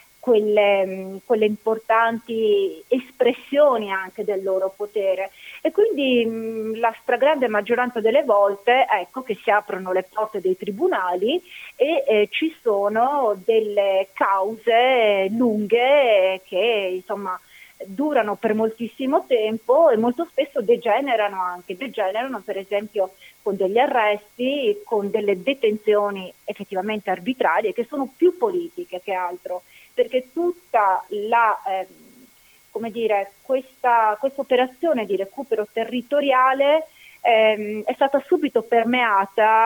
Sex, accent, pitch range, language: female, native, 200-255 Hz, Italian